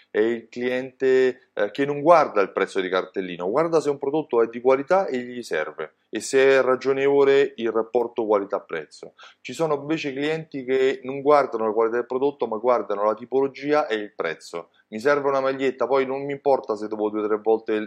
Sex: male